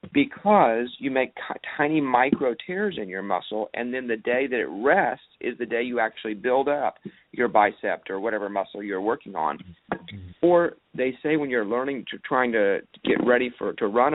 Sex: male